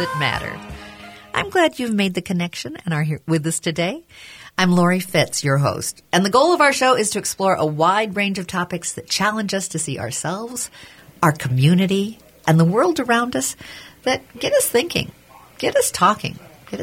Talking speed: 190 wpm